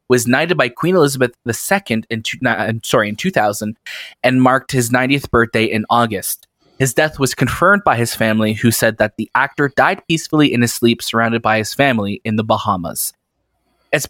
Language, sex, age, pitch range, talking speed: English, male, 20-39, 110-140 Hz, 185 wpm